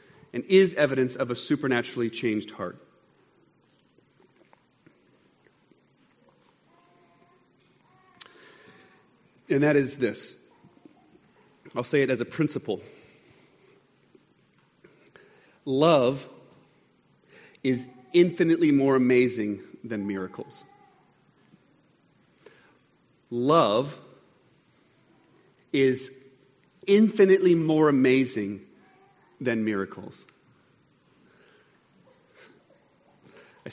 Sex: male